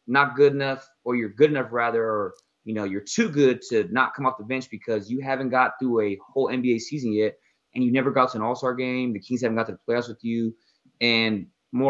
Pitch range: 115-145 Hz